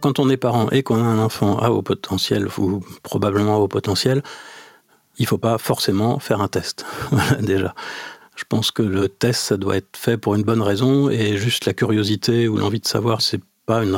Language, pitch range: French, 100-120 Hz